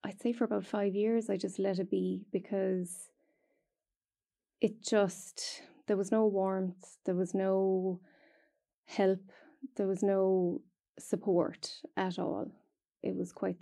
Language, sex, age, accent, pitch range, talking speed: English, female, 20-39, Irish, 175-210 Hz, 135 wpm